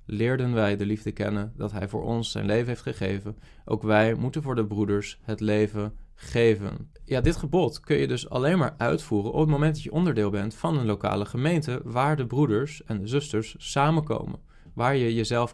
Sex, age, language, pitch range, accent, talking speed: male, 20-39, Dutch, 105-140 Hz, Dutch, 200 wpm